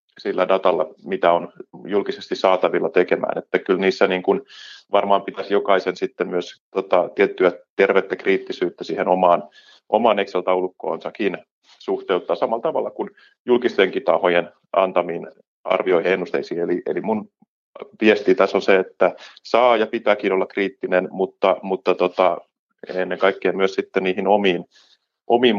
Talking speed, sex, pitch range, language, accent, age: 135 wpm, male, 90-100 Hz, Finnish, native, 30-49